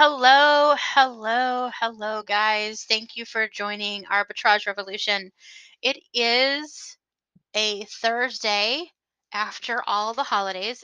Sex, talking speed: female, 100 wpm